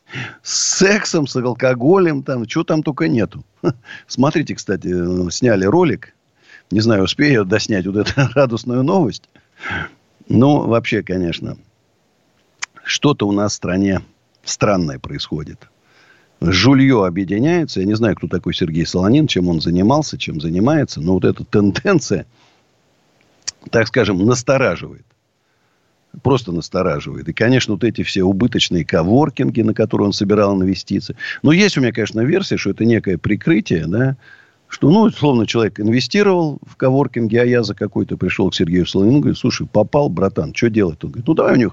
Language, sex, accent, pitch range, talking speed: Russian, male, native, 95-135 Hz, 150 wpm